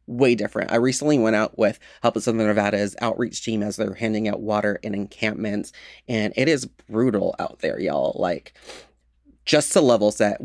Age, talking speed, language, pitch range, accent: 30-49, 185 wpm, English, 110-130 Hz, American